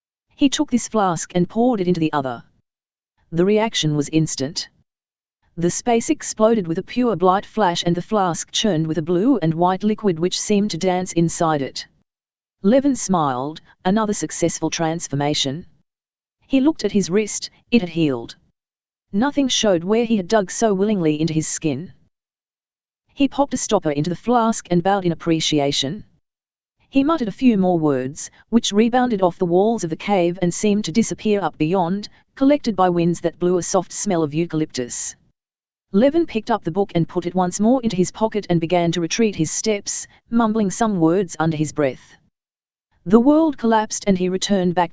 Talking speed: 180 wpm